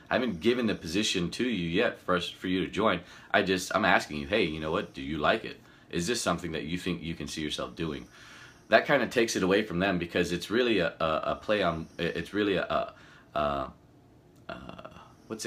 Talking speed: 230 wpm